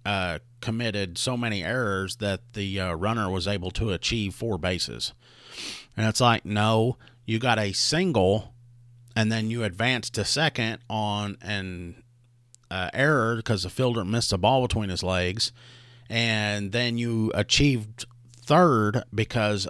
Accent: American